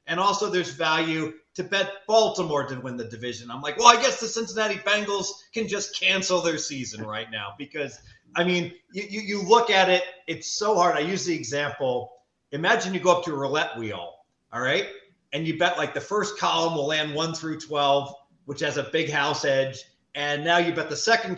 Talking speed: 210 wpm